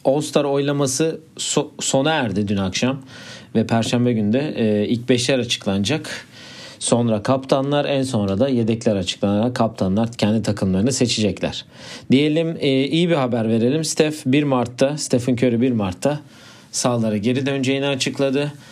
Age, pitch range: 40-59, 110-140 Hz